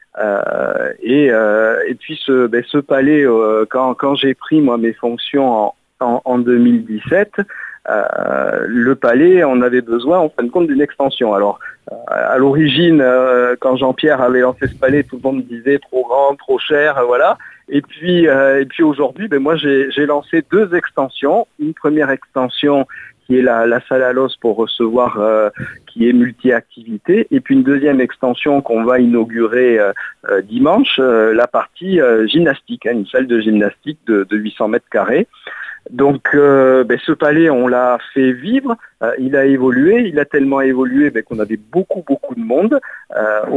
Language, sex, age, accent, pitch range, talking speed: French, male, 50-69, French, 120-150 Hz, 180 wpm